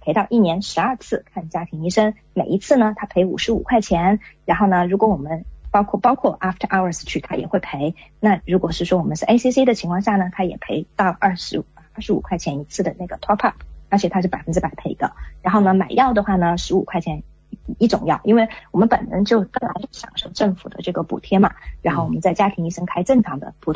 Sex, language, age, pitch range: female, English, 20-39, 170-210 Hz